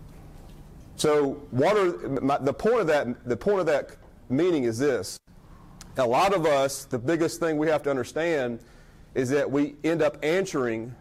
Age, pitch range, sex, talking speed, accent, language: 30-49, 130-165 Hz, male, 140 wpm, American, English